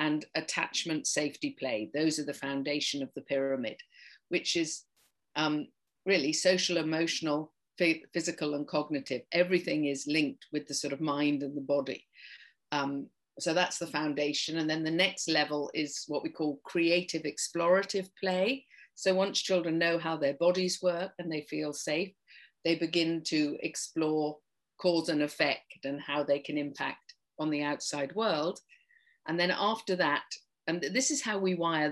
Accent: British